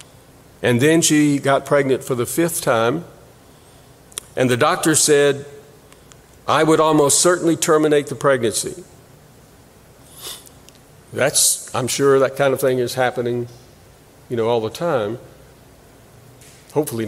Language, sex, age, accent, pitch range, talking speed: English, male, 50-69, American, 120-140 Hz, 125 wpm